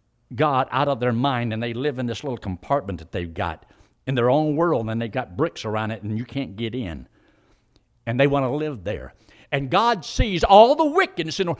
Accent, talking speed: American, 215 wpm